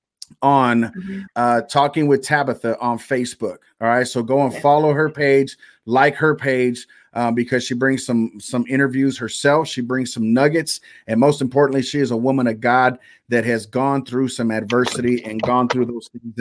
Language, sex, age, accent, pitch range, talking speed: English, male, 40-59, American, 120-140 Hz, 185 wpm